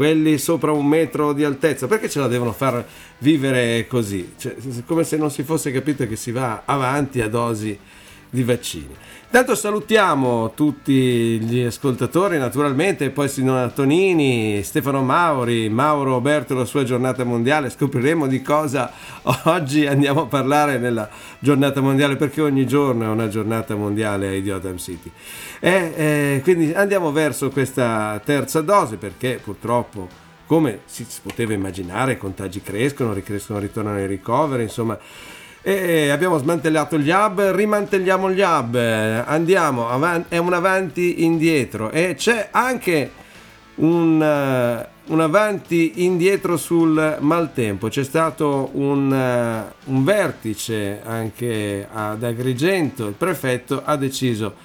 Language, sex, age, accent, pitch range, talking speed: Italian, male, 50-69, native, 115-155 Hz, 130 wpm